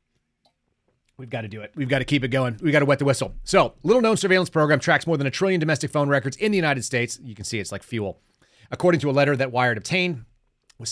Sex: male